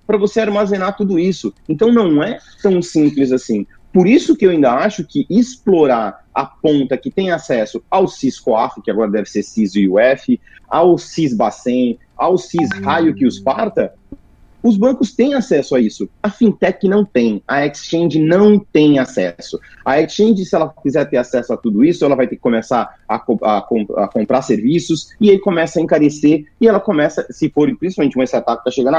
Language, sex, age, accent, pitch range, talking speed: Portuguese, male, 30-49, Brazilian, 130-210 Hz, 195 wpm